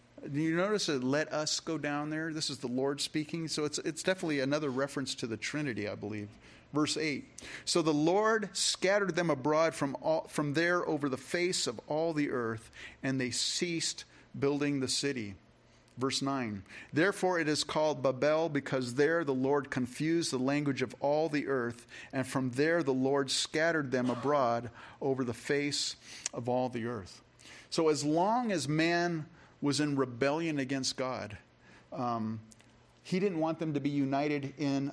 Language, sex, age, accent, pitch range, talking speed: English, male, 40-59, American, 130-160 Hz, 175 wpm